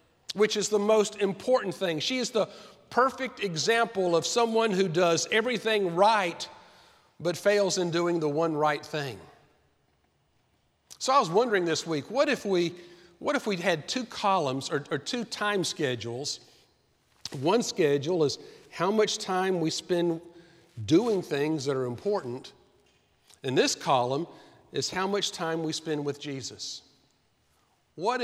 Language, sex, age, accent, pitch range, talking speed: English, male, 50-69, American, 135-195 Hz, 150 wpm